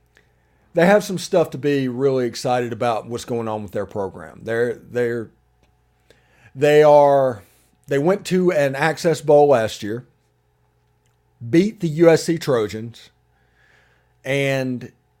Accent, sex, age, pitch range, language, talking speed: American, male, 40-59, 100-150 Hz, English, 135 wpm